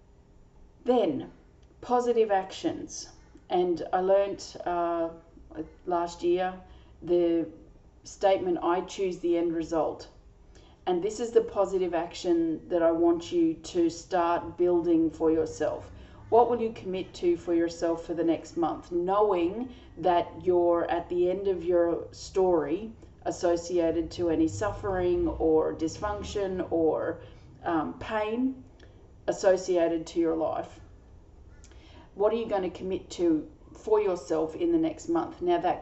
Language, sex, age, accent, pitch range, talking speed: English, female, 30-49, Australian, 165-235 Hz, 130 wpm